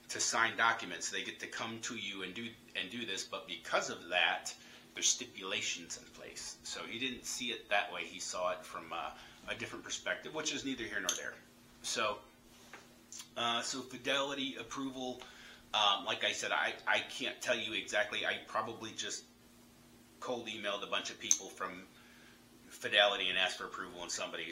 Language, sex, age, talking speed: English, male, 30-49, 185 wpm